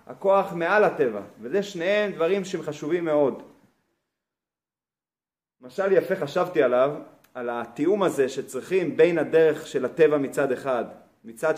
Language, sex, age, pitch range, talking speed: Hebrew, male, 30-49, 150-205 Hz, 120 wpm